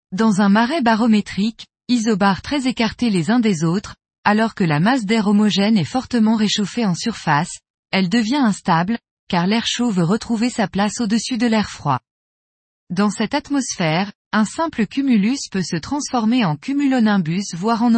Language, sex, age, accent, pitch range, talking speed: French, female, 20-39, French, 185-235 Hz, 165 wpm